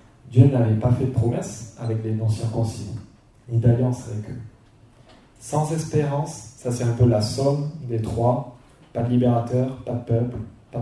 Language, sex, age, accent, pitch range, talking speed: French, male, 30-49, French, 115-130 Hz, 165 wpm